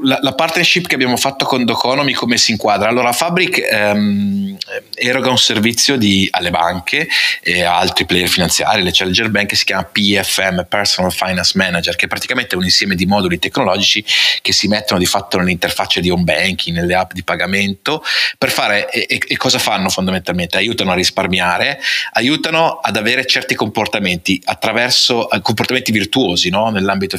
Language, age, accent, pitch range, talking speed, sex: Italian, 30-49, native, 90-110 Hz, 165 wpm, male